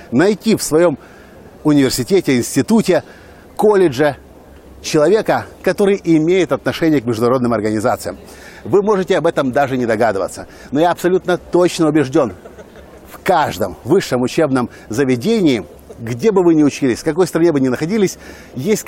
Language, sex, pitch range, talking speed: Russian, male, 140-180 Hz, 135 wpm